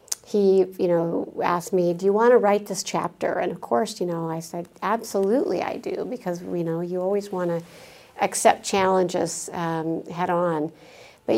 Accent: American